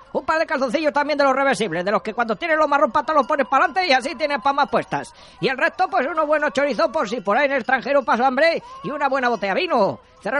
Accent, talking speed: Spanish, 275 wpm